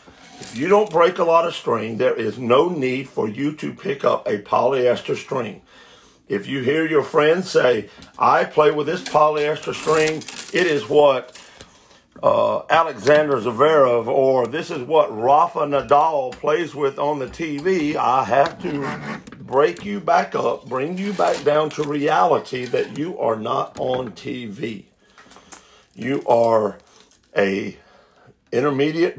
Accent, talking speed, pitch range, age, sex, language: American, 150 wpm, 135-205 Hz, 50-69, male, English